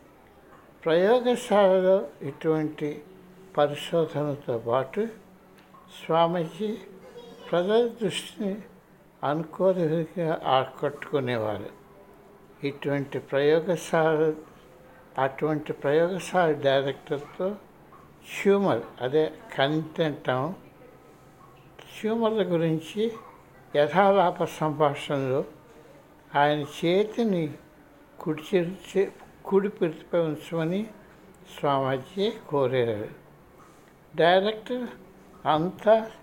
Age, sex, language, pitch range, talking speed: 60-79, male, Telugu, 150-195 Hz, 50 wpm